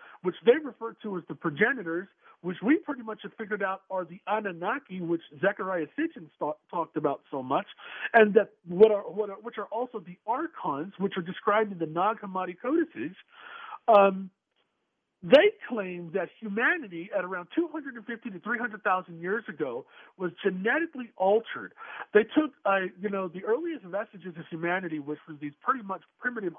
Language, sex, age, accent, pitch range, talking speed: English, male, 50-69, American, 180-245 Hz, 170 wpm